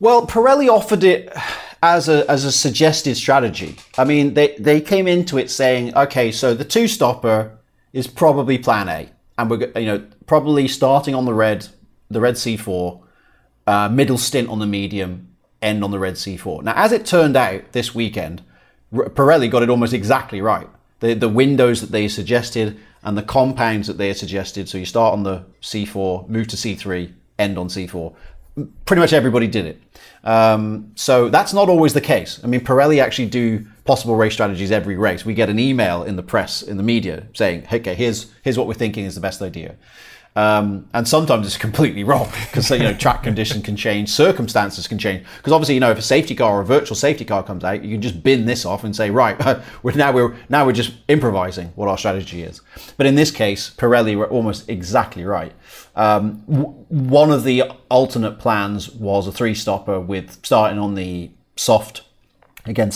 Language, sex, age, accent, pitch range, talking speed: English, male, 30-49, British, 100-130 Hz, 195 wpm